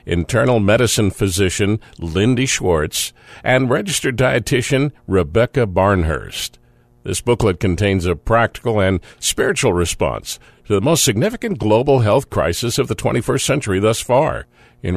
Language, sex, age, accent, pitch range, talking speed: English, male, 50-69, American, 90-115 Hz, 130 wpm